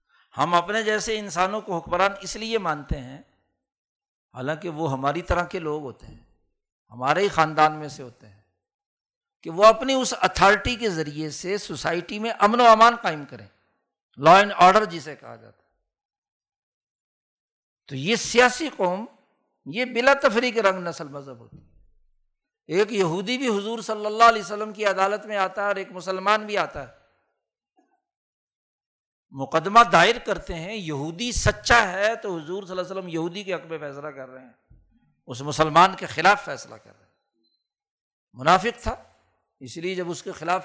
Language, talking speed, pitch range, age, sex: Urdu, 170 wpm, 150-215 Hz, 60-79, male